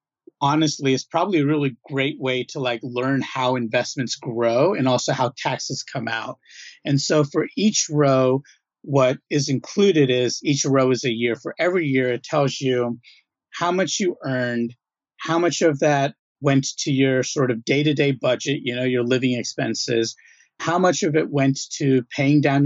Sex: male